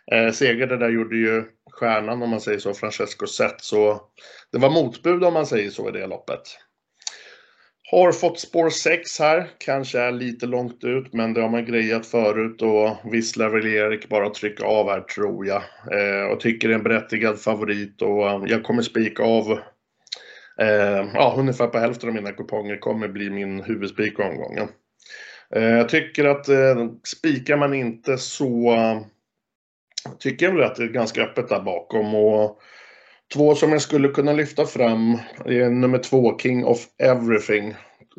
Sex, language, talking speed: male, Swedish, 175 wpm